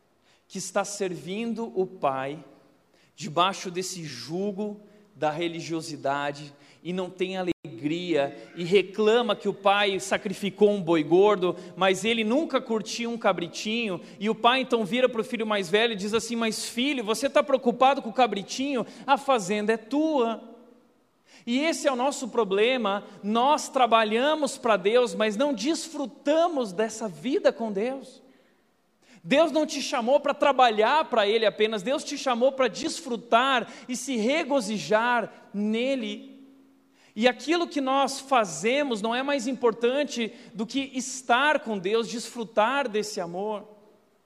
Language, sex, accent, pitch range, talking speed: Portuguese, male, Brazilian, 200-255 Hz, 145 wpm